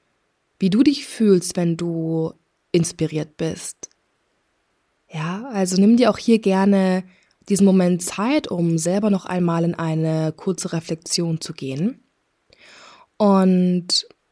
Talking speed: 120 wpm